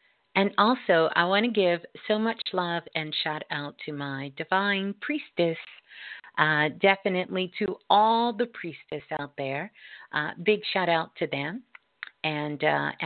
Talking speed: 140 wpm